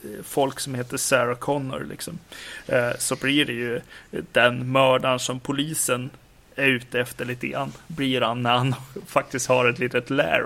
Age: 30-49